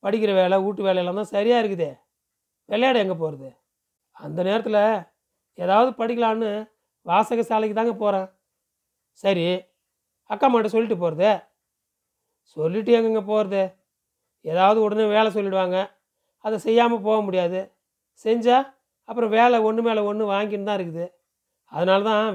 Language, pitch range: Tamil, 180-220 Hz